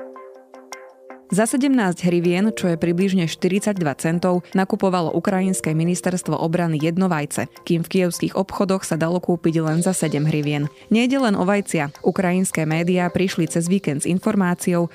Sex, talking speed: female, 140 wpm